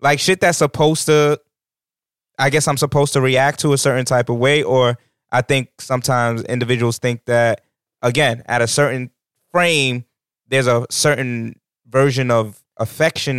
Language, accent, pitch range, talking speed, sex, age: English, American, 120-150 Hz, 155 wpm, male, 20-39